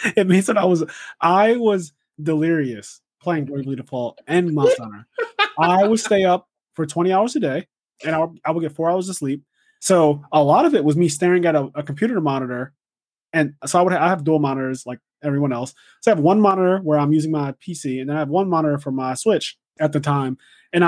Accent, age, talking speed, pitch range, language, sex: American, 20-39, 225 wpm, 140-175 Hz, English, male